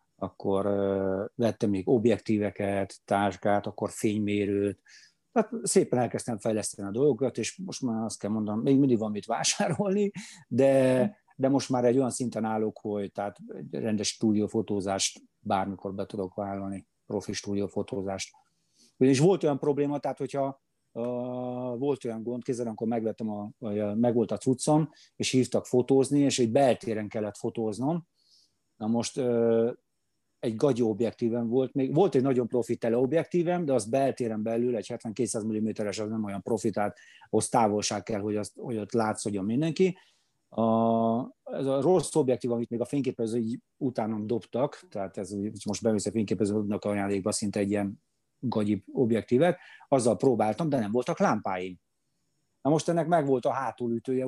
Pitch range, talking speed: 105-135 Hz, 155 wpm